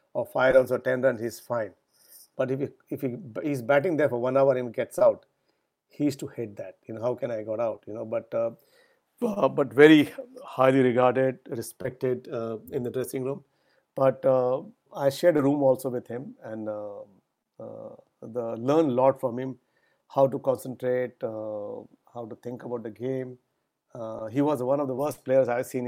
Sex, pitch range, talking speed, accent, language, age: male, 125-140 Hz, 200 wpm, Indian, English, 60-79